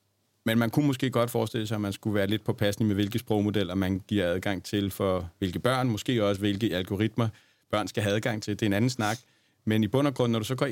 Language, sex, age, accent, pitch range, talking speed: Danish, male, 40-59, native, 100-125 Hz, 265 wpm